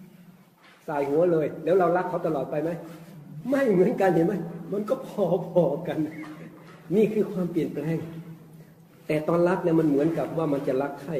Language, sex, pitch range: Thai, male, 130-170 Hz